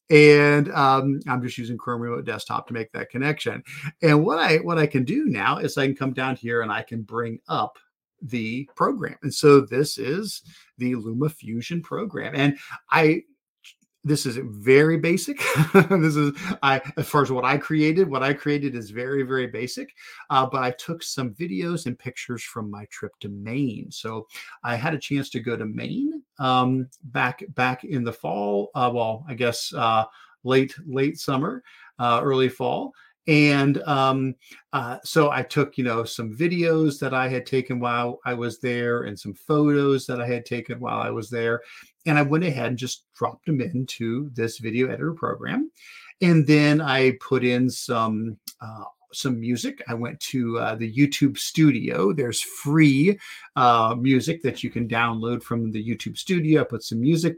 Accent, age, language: American, 50-69, English